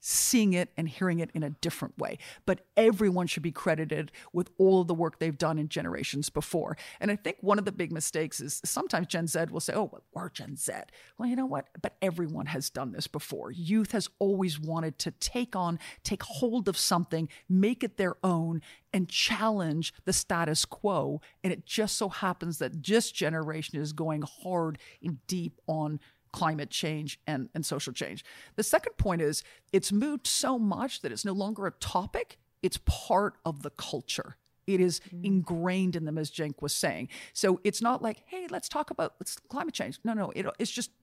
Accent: American